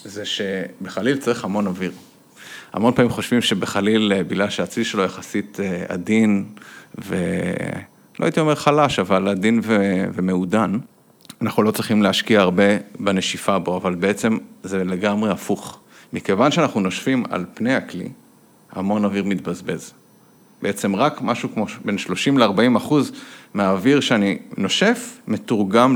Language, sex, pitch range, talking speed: Hebrew, male, 100-160 Hz, 125 wpm